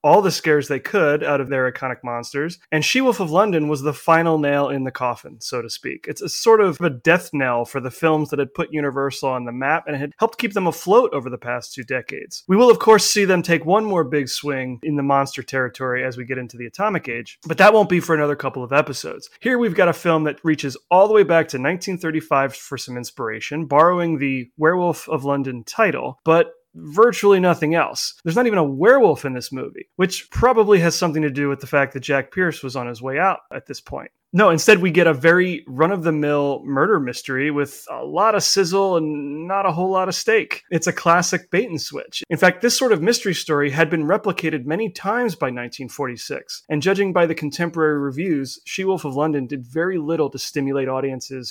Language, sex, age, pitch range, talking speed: English, male, 30-49, 140-190 Hz, 225 wpm